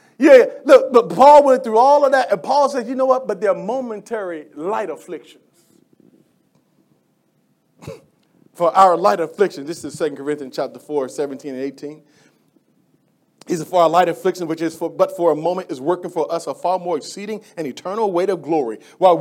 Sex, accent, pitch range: male, American, 155-210 Hz